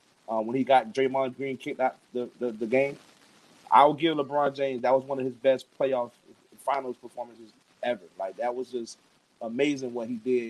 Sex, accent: male, American